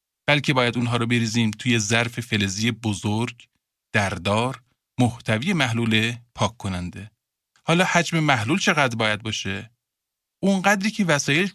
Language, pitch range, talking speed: Persian, 110-160 Hz, 120 wpm